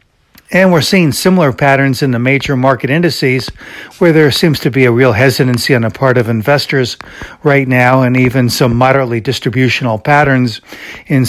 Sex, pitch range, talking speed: male, 120-145 Hz, 170 wpm